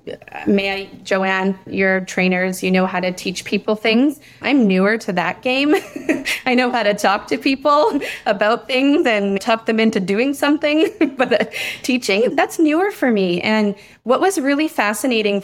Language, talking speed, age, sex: English, 170 wpm, 20-39, female